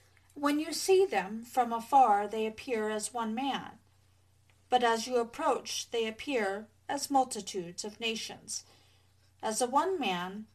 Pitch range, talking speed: 185-255 Hz, 140 wpm